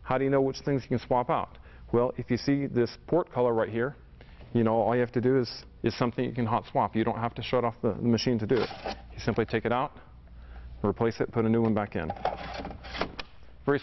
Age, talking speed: 40-59, 250 wpm